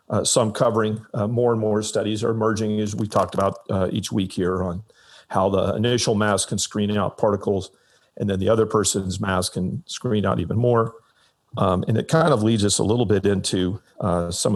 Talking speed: 210 wpm